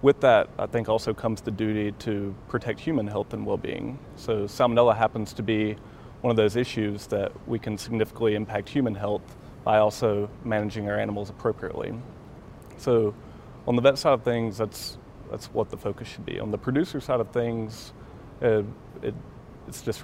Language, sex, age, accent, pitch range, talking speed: English, male, 30-49, American, 105-120 Hz, 180 wpm